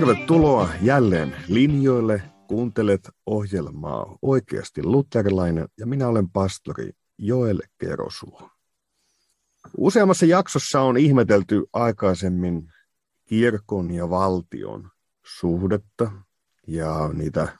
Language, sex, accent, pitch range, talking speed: Finnish, male, native, 95-115 Hz, 80 wpm